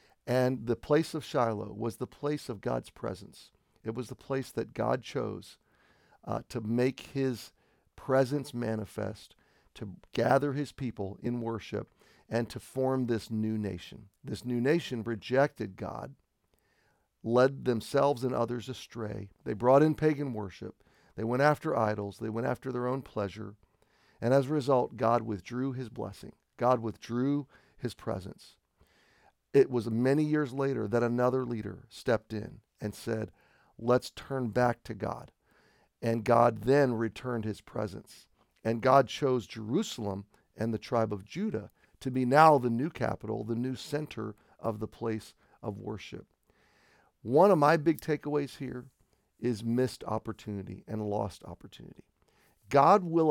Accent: American